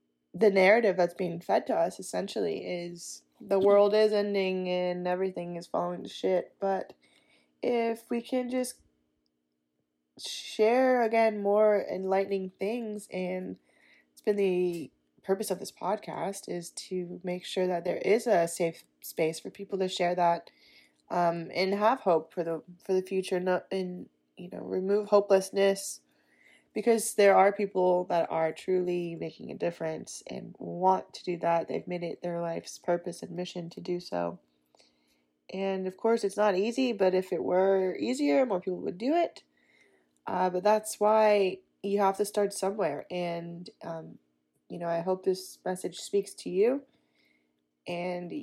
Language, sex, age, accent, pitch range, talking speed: English, female, 20-39, American, 170-200 Hz, 160 wpm